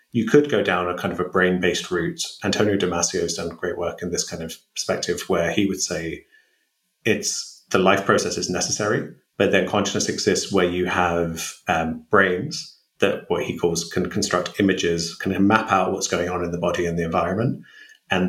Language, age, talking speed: Bulgarian, 30-49, 195 wpm